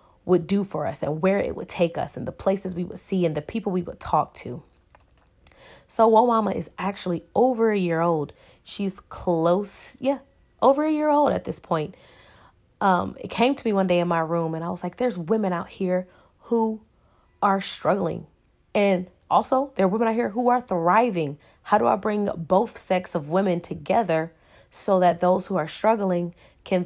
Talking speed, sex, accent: 195 wpm, female, American